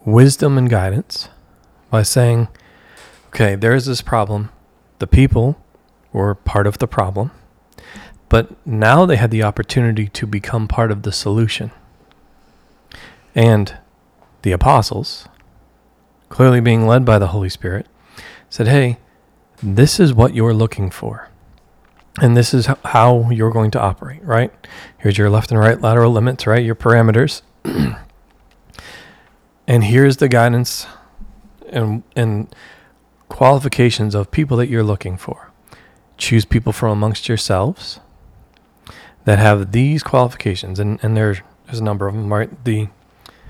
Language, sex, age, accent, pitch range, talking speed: English, male, 40-59, American, 105-125 Hz, 135 wpm